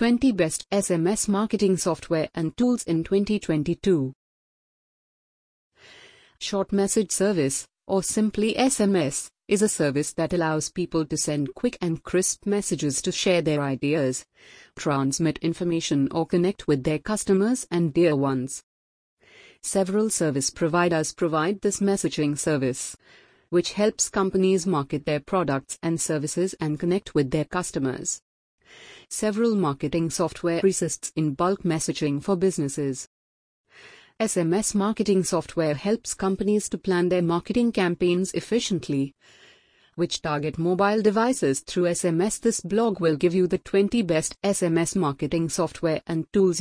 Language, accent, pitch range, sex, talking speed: English, Indian, 150-195 Hz, female, 130 wpm